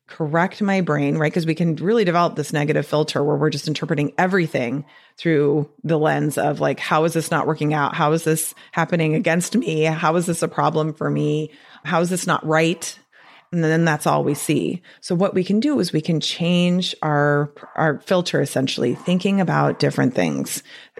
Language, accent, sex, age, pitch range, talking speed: English, American, female, 30-49, 155-240 Hz, 195 wpm